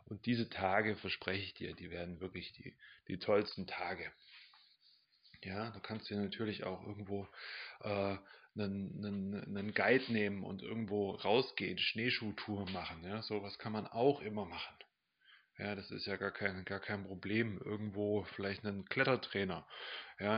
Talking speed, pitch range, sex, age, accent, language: 155 wpm, 100-120 Hz, male, 30-49, German, German